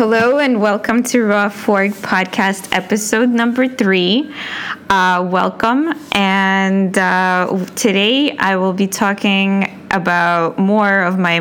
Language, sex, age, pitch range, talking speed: English, female, 20-39, 185-230 Hz, 120 wpm